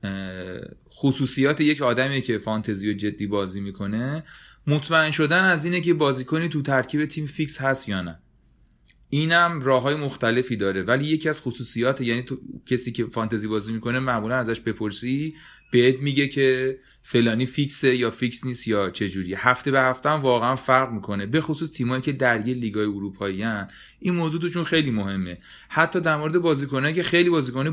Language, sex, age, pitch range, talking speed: Persian, male, 30-49, 110-145 Hz, 170 wpm